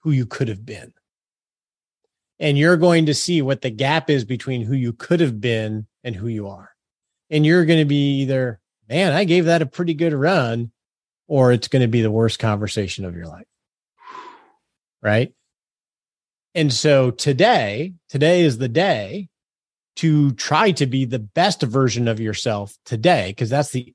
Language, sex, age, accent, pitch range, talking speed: English, male, 30-49, American, 115-155 Hz, 175 wpm